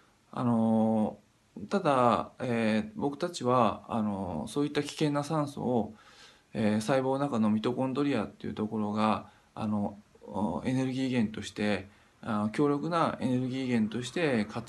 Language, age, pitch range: Japanese, 20-39, 105-130 Hz